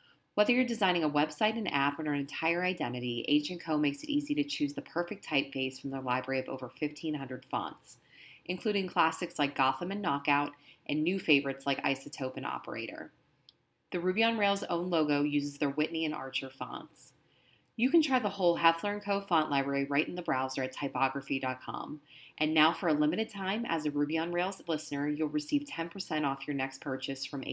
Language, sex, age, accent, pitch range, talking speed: English, female, 30-49, American, 135-165 Hz, 190 wpm